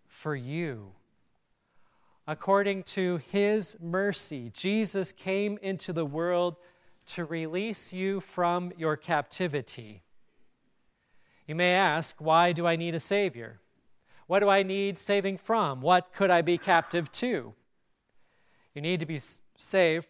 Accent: American